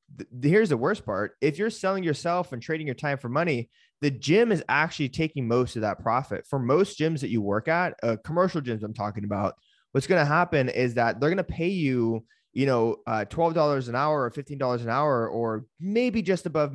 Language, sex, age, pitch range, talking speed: English, male, 20-39, 115-160 Hz, 220 wpm